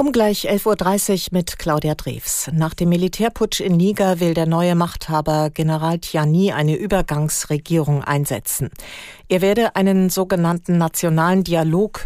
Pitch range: 160-190 Hz